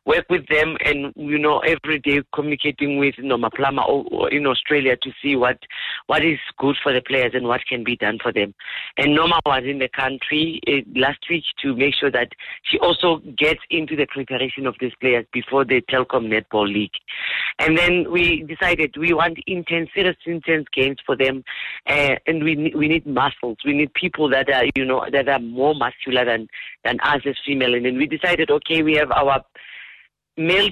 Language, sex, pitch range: English, female, 130-160 Hz